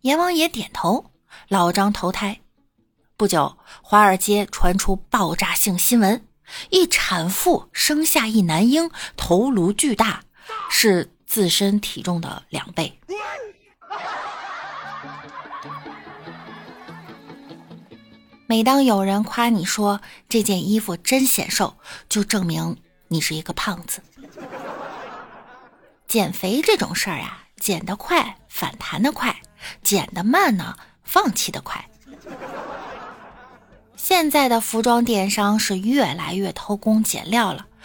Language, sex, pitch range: Chinese, female, 195-275 Hz